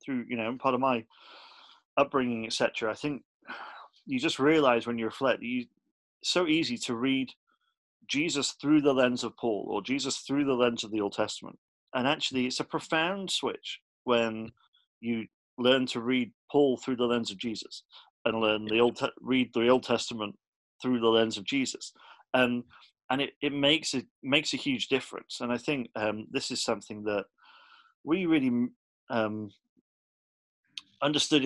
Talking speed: 170 wpm